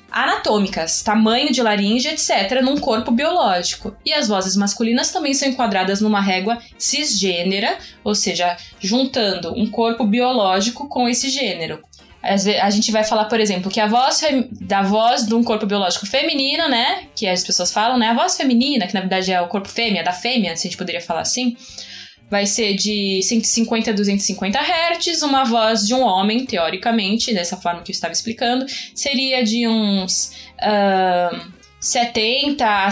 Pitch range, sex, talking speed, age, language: 195-245 Hz, female, 170 wpm, 10-29, Portuguese